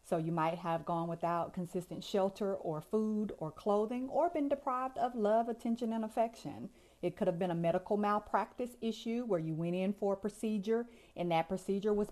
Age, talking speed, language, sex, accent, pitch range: 30-49, 195 wpm, English, female, American, 175-210 Hz